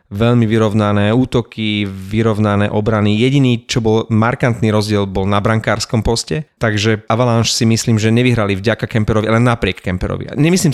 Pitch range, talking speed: 105-120 Hz, 145 wpm